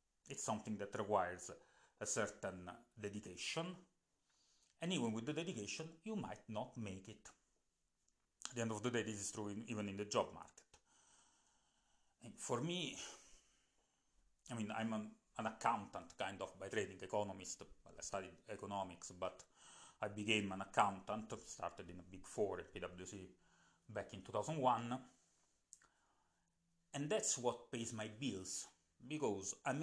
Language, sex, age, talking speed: English, male, 30-49, 145 wpm